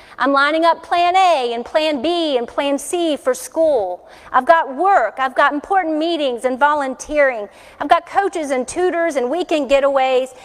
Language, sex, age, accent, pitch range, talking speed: English, female, 40-59, American, 270-355 Hz, 170 wpm